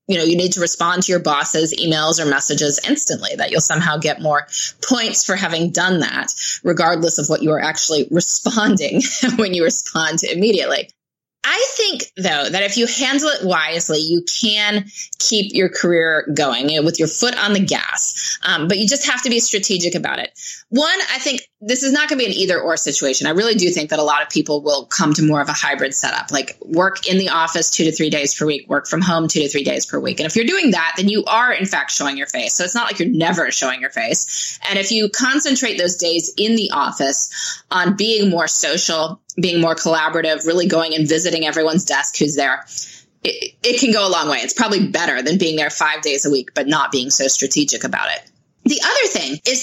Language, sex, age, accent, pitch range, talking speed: English, female, 20-39, American, 155-220 Hz, 230 wpm